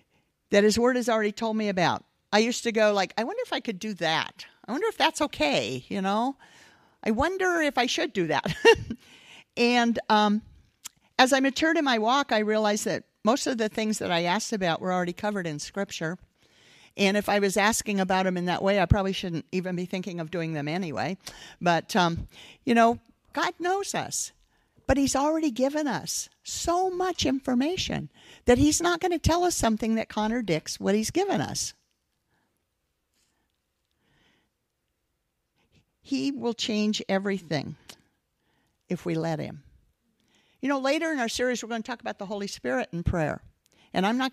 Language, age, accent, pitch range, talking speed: English, 50-69, American, 185-265 Hz, 180 wpm